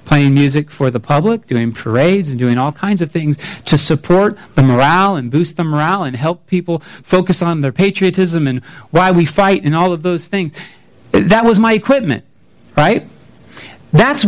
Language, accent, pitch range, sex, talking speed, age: English, American, 150-205 Hz, male, 180 wpm, 40-59